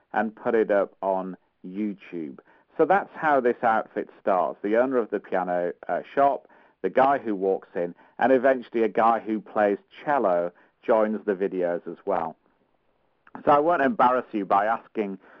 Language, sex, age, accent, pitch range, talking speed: English, male, 50-69, British, 100-130 Hz, 170 wpm